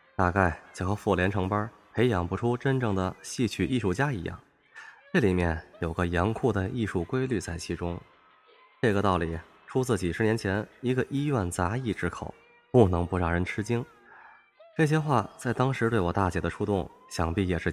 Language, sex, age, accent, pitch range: Chinese, male, 20-39, native, 90-130 Hz